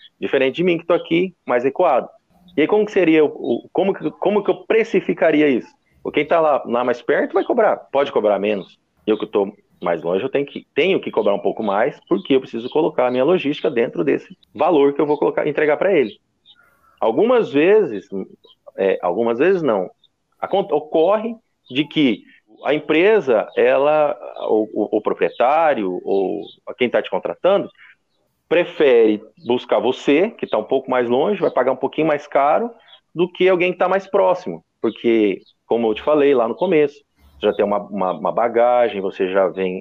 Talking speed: 195 wpm